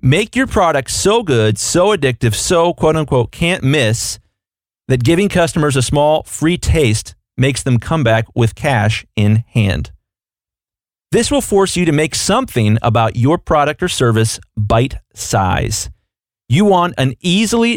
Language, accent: English, American